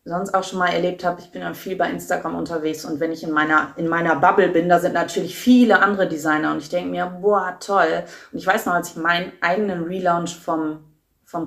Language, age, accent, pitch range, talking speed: German, 30-49, German, 150-195 Hz, 230 wpm